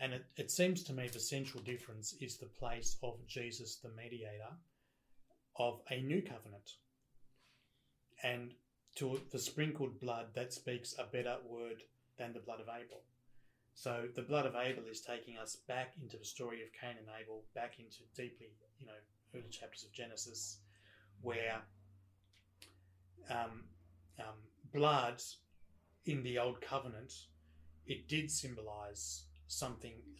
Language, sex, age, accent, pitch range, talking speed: English, male, 30-49, Australian, 110-125 Hz, 145 wpm